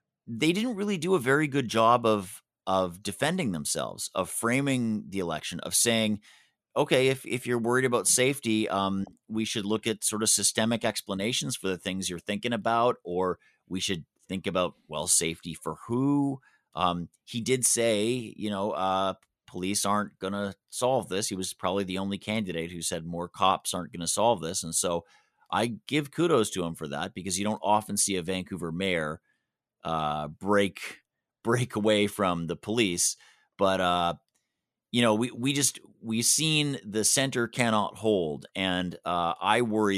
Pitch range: 90-115 Hz